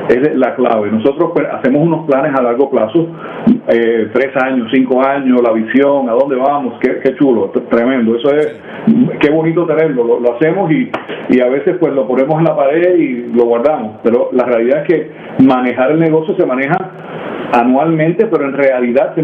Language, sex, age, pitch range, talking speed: Spanish, male, 40-59, 130-170 Hz, 195 wpm